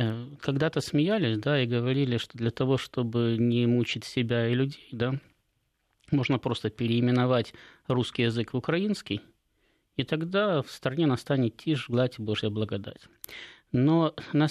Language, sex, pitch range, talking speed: Russian, male, 115-140 Hz, 140 wpm